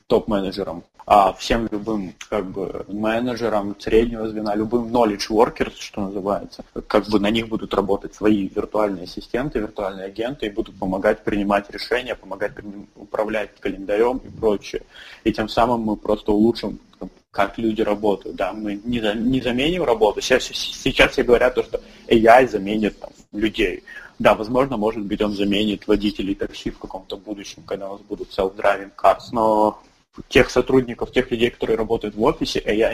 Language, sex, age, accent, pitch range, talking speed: Russian, male, 20-39, native, 100-115 Hz, 160 wpm